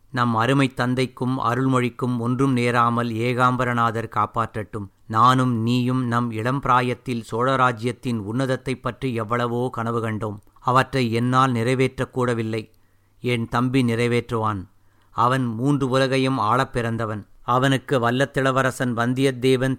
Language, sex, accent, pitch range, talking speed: Tamil, male, native, 115-130 Hz, 95 wpm